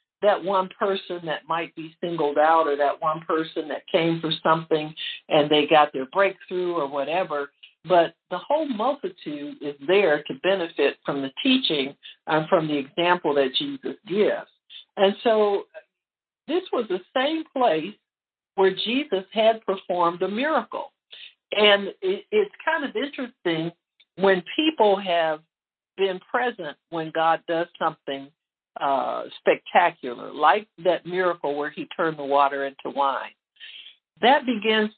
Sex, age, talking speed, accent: male, 60-79, 140 wpm, American